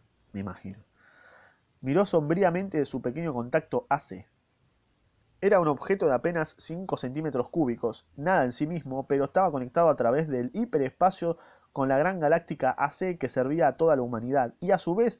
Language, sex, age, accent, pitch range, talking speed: Spanish, male, 20-39, Argentinian, 125-175 Hz, 170 wpm